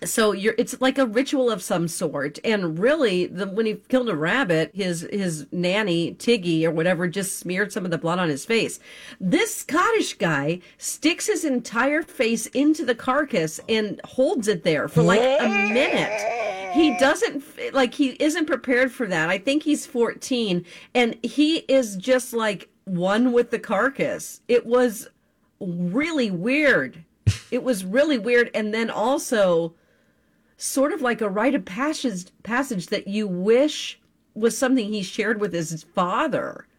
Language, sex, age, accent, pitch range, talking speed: English, female, 40-59, American, 180-255 Hz, 160 wpm